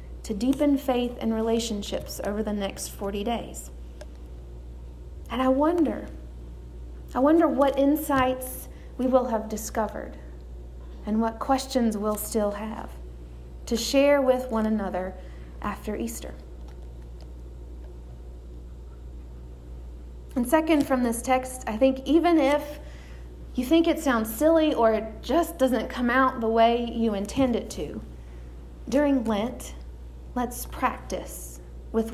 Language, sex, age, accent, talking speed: English, female, 40-59, American, 120 wpm